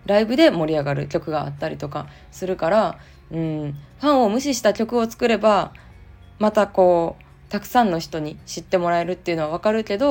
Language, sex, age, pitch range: Japanese, female, 20-39, 160-220 Hz